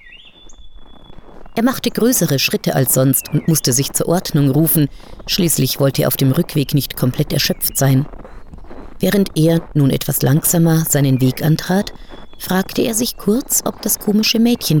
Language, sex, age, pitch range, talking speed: German, female, 40-59, 145-195 Hz, 155 wpm